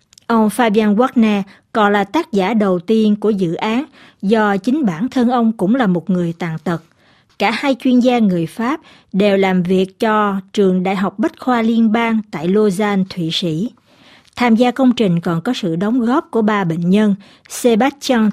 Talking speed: 190 wpm